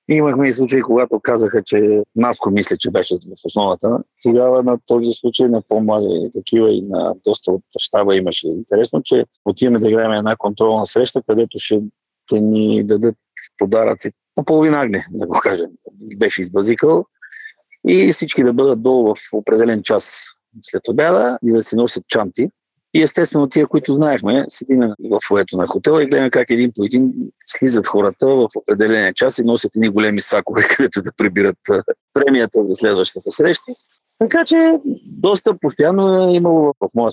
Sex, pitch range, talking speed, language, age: male, 110-155 Hz, 165 wpm, Bulgarian, 50-69